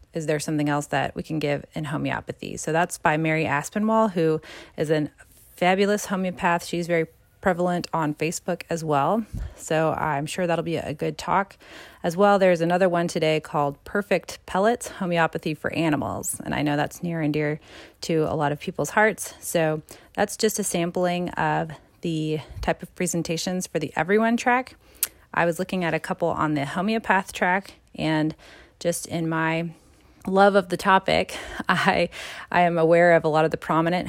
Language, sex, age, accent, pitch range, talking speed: English, female, 30-49, American, 160-185 Hz, 180 wpm